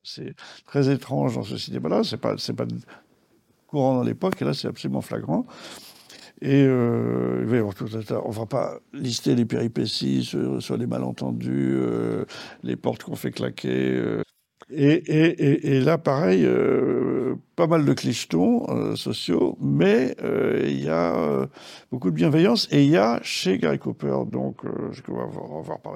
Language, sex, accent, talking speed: French, male, French, 155 wpm